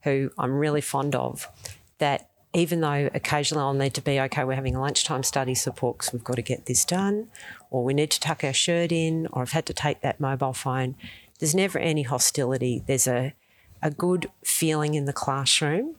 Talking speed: 205 wpm